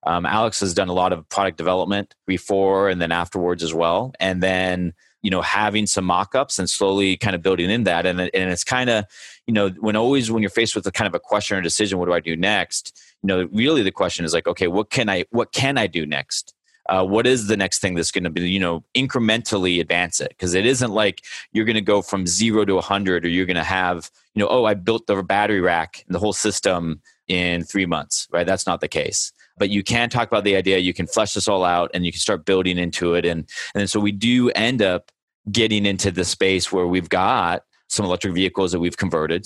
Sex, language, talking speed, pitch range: male, English, 250 wpm, 90-105 Hz